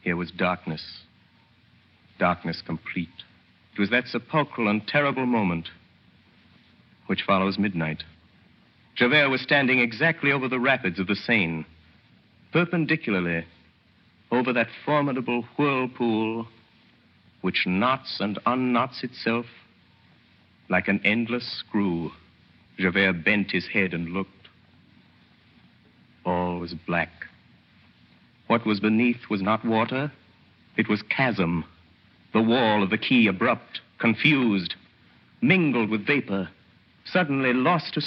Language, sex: English, male